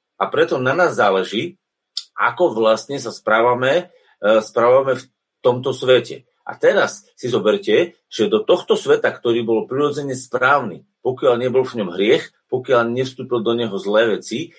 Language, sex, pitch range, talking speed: Slovak, male, 130-205 Hz, 145 wpm